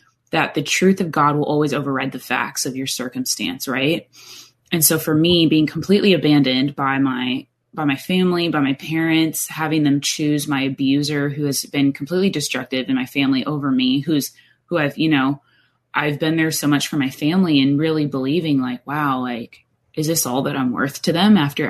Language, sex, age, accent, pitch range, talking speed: English, female, 20-39, American, 135-160 Hz, 200 wpm